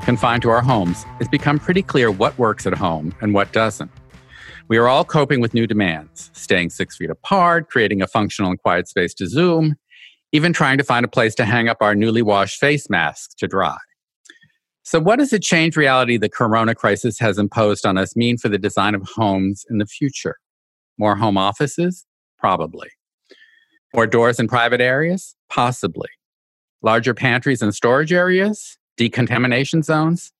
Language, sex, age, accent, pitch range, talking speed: English, male, 50-69, American, 105-145 Hz, 175 wpm